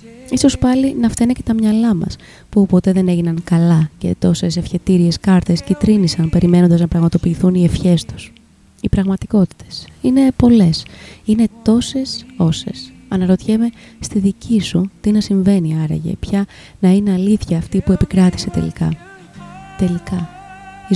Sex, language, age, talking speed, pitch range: female, Greek, 20-39, 140 wpm, 170-210 Hz